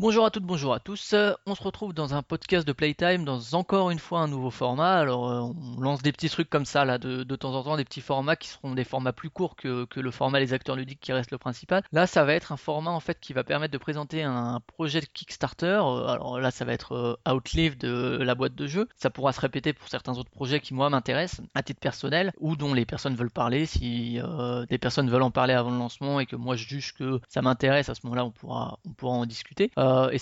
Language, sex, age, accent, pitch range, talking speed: French, male, 20-39, French, 125-150 Hz, 270 wpm